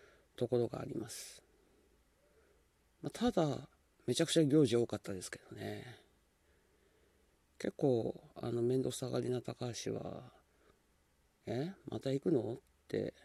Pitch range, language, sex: 110-140 Hz, Japanese, male